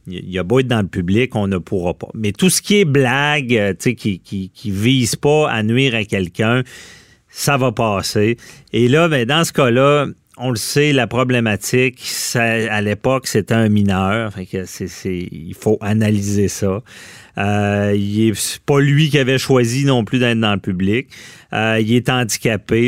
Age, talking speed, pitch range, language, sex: 40-59, 195 wpm, 100-125 Hz, French, male